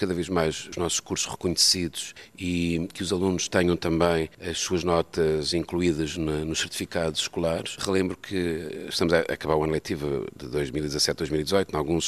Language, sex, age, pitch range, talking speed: Portuguese, male, 40-59, 75-90 Hz, 160 wpm